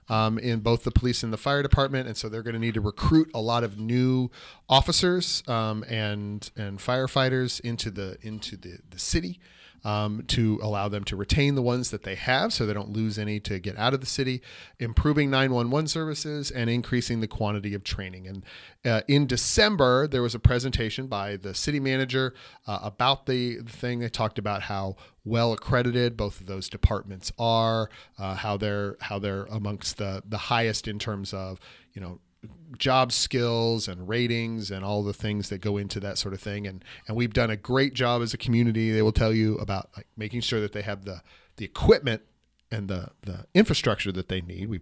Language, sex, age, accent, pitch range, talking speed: English, male, 40-59, American, 100-125 Hz, 205 wpm